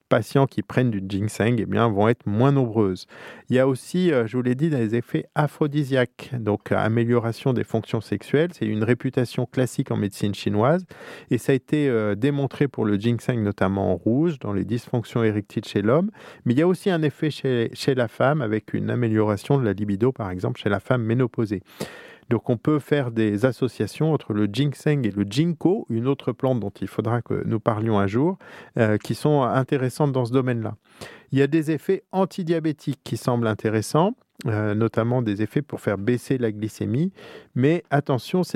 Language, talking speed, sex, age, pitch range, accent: French, 195 wpm, male, 40-59, 110-140 Hz, French